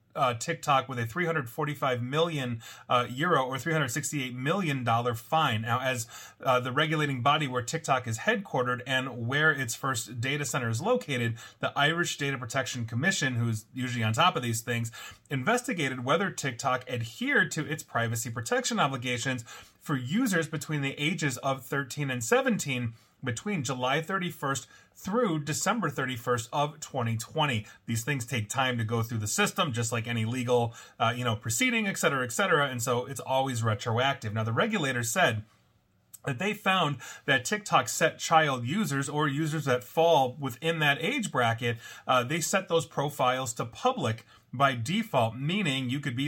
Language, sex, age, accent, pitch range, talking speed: English, male, 30-49, American, 120-160 Hz, 165 wpm